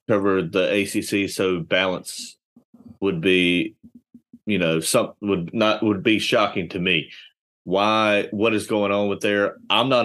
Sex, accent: male, American